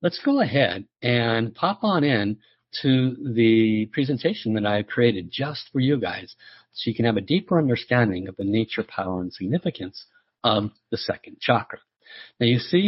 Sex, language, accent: male, English, American